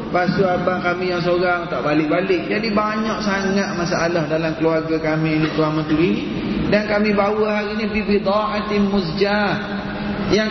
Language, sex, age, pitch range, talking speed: Malay, male, 30-49, 165-205 Hz, 155 wpm